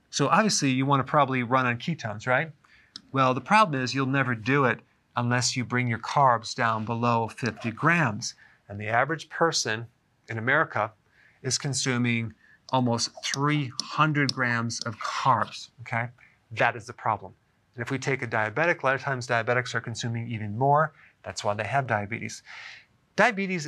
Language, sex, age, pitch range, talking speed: English, male, 40-59, 120-145 Hz, 165 wpm